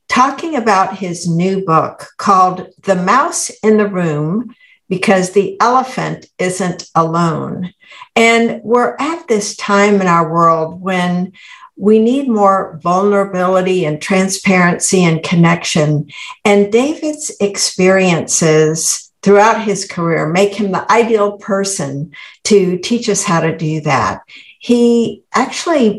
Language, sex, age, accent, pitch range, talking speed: English, female, 60-79, American, 175-225 Hz, 120 wpm